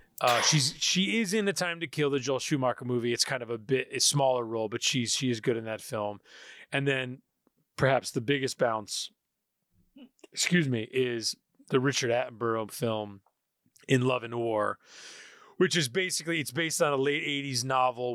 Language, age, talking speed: English, 30-49, 185 wpm